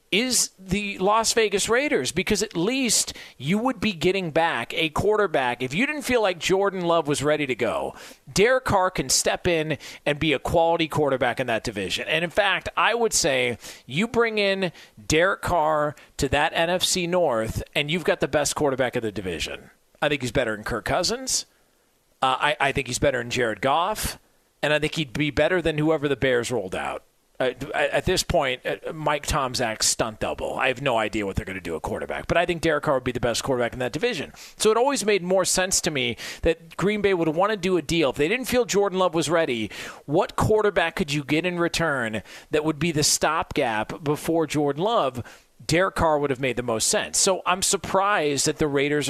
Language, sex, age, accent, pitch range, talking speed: English, male, 40-59, American, 145-195 Hz, 215 wpm